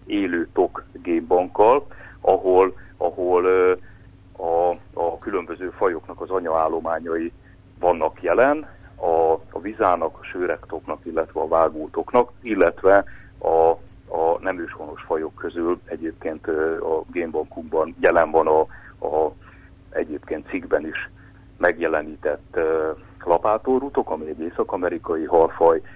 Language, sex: Hungarian, male